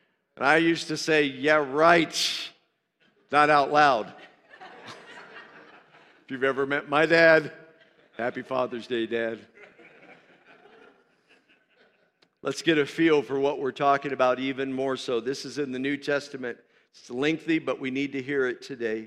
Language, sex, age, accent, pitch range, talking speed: English, male, 50-69, American, 135-165 Hz, 145 wpm